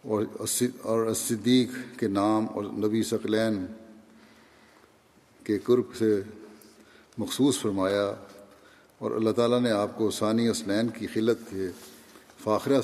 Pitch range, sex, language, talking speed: 110-125 Hz, male, Urdu, 125 wpm